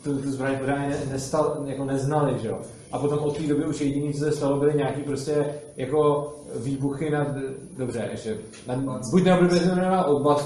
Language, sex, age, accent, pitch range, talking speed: Czech, male, 30-49, native, 140-155 Hz, 155 wpm